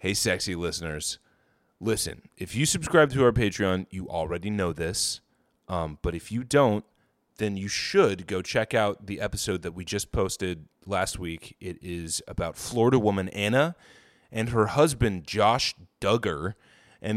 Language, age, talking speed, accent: English, 20-39, 155 wpm, American